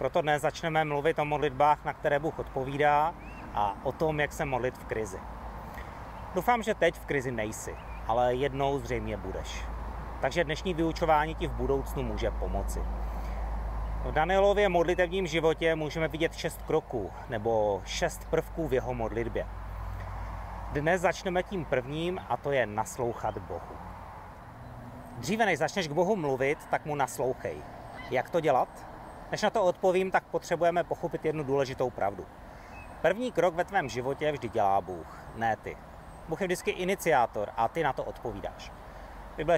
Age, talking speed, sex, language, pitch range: 30-49, 155 wpm, male, Czech, 115-165 Hz